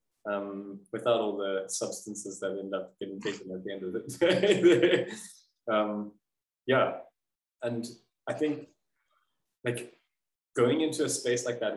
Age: 20-39